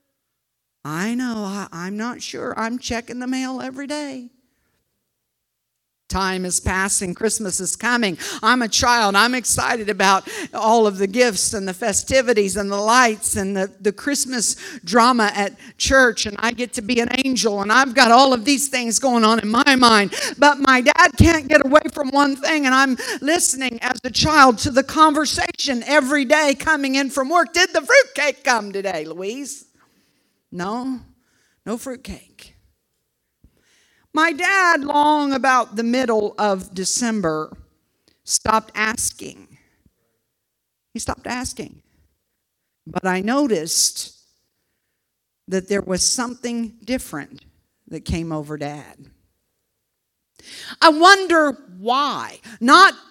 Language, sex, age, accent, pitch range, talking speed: English, female, 50-69, American, 210-290 Hz, 135 wpm